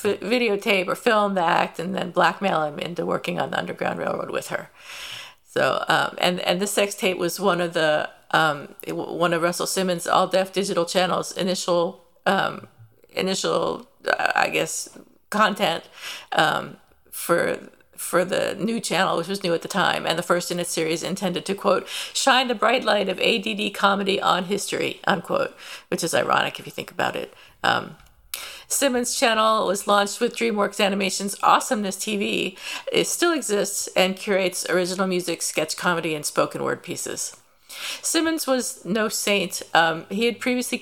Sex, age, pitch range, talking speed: female, 50-69, 180-225 Hz, 165 wpm